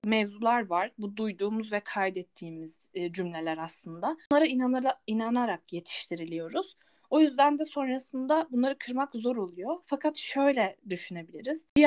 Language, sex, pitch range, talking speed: Turkish, female, 195-265 Hz, 115 wpm